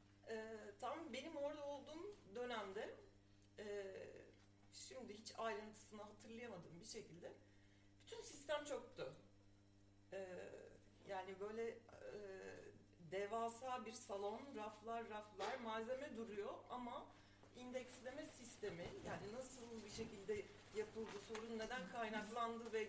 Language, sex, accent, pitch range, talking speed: Turkish, female, native, 200-260 Hz, 100 wpm